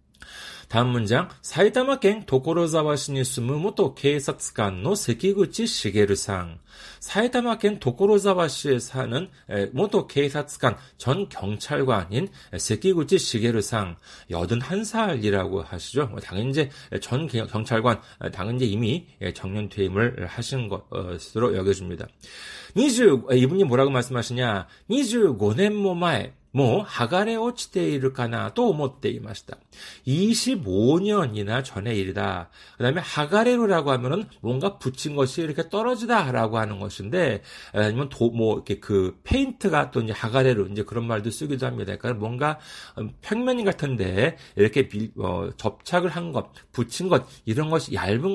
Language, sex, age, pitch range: Korean, male, 40-59, 110-180 Hz